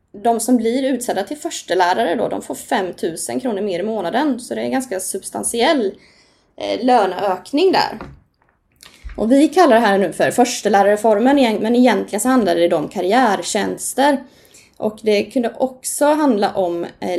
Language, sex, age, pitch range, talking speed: Swedish, female, 20-39, 195-260 Hz, 160 wpm